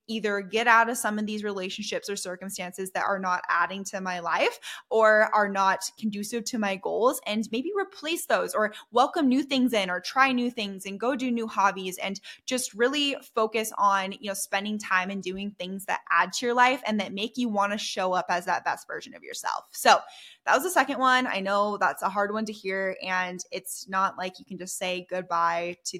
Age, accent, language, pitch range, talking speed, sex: 10-29, American, English, 185-230 Hz, 220 wpm, female